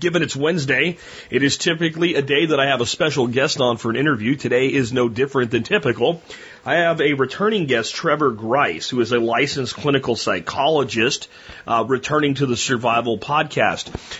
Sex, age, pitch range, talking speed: male, 40-59, 120-160 Hz, 180 wpm